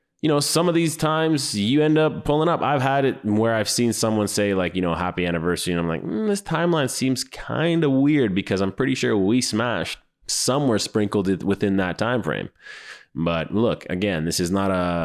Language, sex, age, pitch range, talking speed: English, male, 20-39, 90-115 Hz, 215 wpm